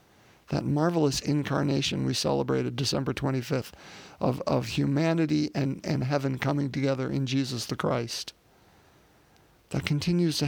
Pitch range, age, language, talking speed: 135-155 Hz, 50-69, English, 125 wpm